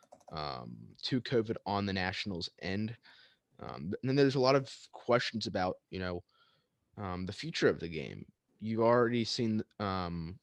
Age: 20-39